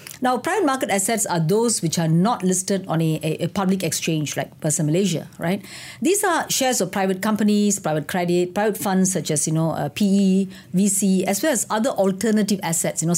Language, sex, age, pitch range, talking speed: English, female, 50-69, 170-215 Hz, 205 wpm